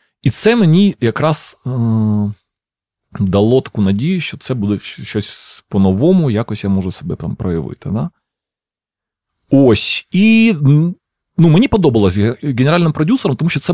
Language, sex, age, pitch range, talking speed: Ukrainian, male, 30-49, 95-135 Hz, 135 wpm